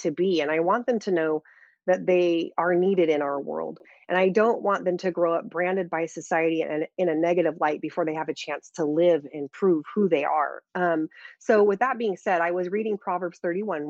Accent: American